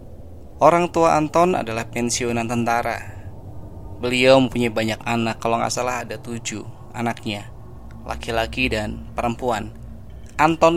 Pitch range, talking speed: 110-130 Hz, 110 wpm